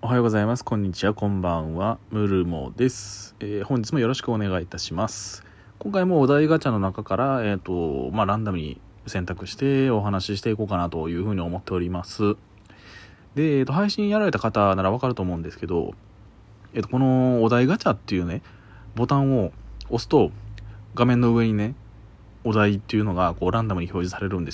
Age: 20-39